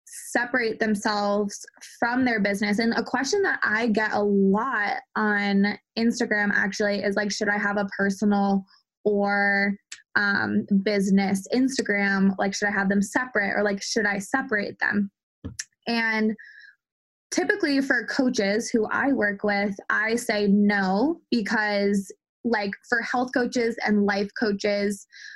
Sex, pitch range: female, 200-230 Hz